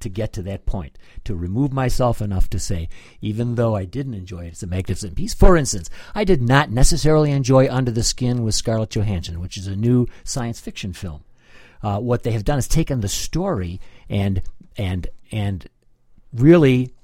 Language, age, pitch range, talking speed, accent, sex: English, 60-79, 95-130 Hz, 185 wpm, American, male